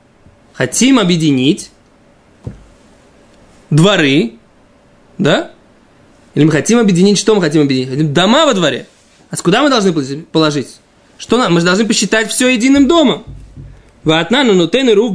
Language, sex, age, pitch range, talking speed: Russian, male, 20-39, 170-225 Hz, 135 wpm